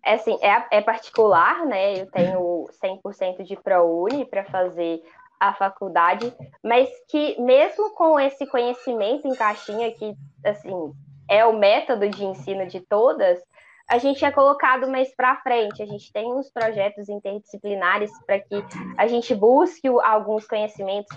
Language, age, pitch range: Portuguese, 10-29, 205-275 Hz